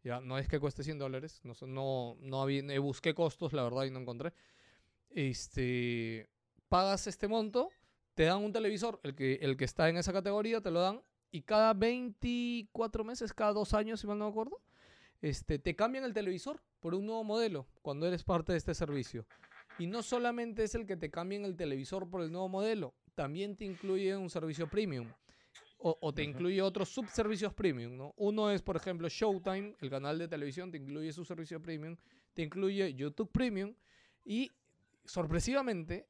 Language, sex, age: Spanish, male, 30-49